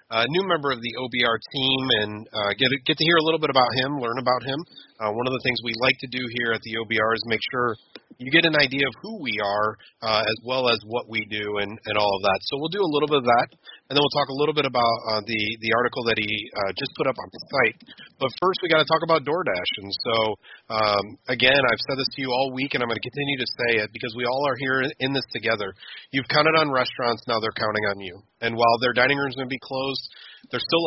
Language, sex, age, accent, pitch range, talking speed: English, male, 30-49, American, 110-140 Hz, 280 wpm